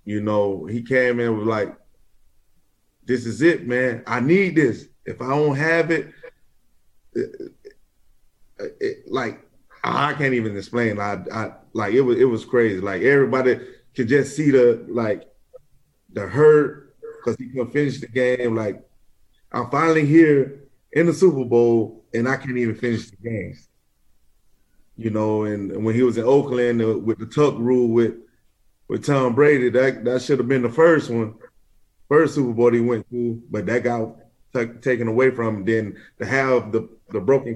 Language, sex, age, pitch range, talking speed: English, male, 20-39, 115-140 Hz, 180 wpm